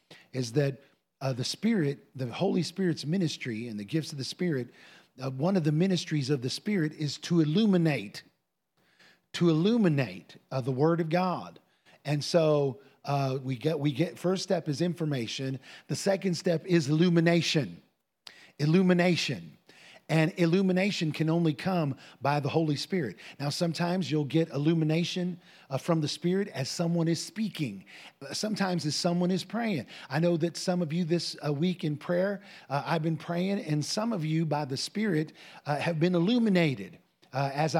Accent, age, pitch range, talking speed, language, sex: American, 40-59, 145-180 Hz, 165 wpm, English, male